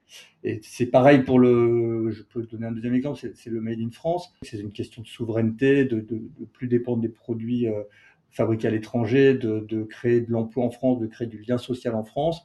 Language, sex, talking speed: French, male, 225 wpm